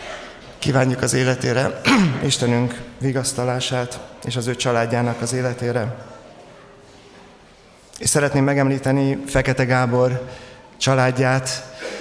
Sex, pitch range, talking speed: male, 115-130 Hz, 85 wpm